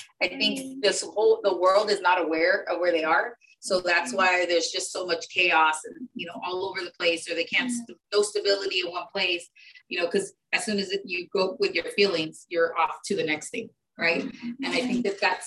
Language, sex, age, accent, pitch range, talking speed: English, female, 30-49, American, 175-220 Hz, 235 wpm